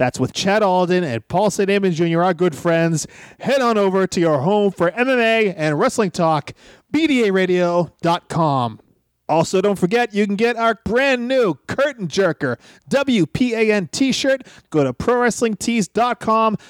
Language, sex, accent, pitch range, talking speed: English, male, American, 165-225 Hz, 140 wpm